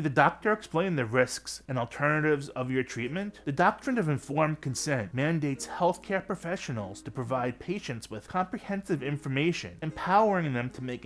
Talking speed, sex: 150 wpm, male